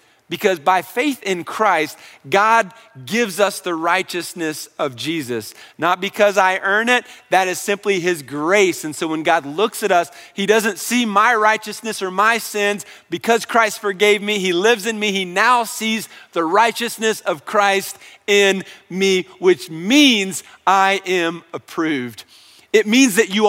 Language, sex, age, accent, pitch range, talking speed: English, male, 40-59, American, 175-230 Hz, 160 wpm